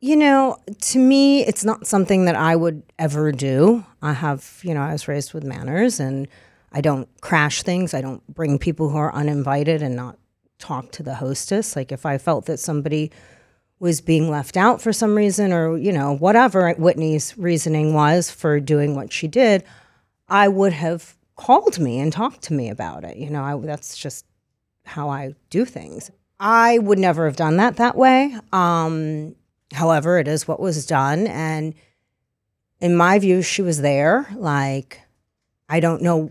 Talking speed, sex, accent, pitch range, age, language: 180 wpm, female, American, 145-185 Hz, 40-59, English